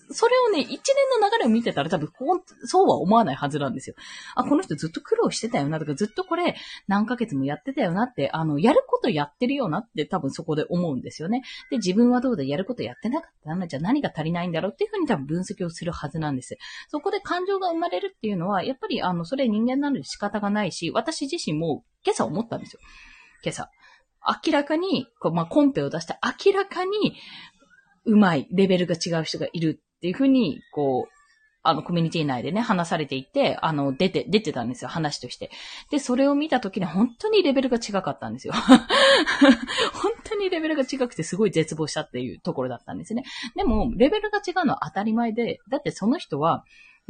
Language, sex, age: Japanese, female, 20-39